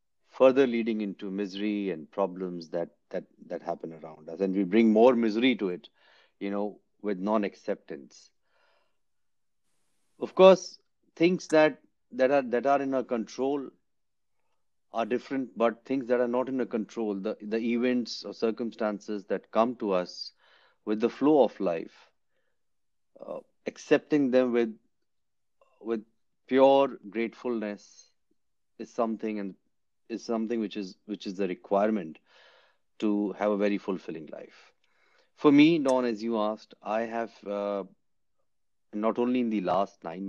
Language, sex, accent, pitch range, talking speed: English, male, Indian, 95-120 Hz, 145 wpm